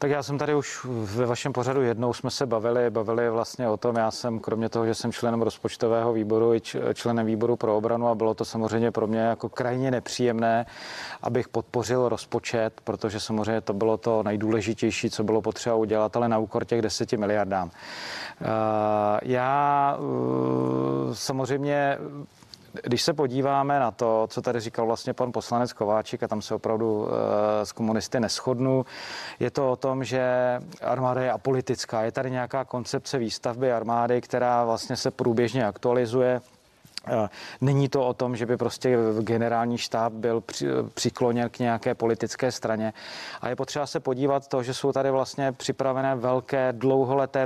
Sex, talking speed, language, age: male, 160 wpm, Czech, 30-49